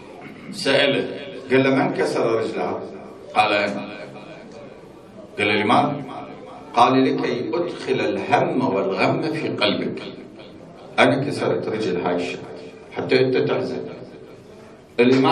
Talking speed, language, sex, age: 100 wpm, Arabic, male, 50-69